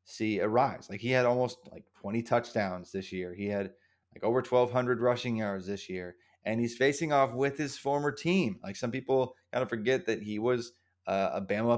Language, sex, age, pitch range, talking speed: English, male, 20-39, 100-125 Hz, 210 wpm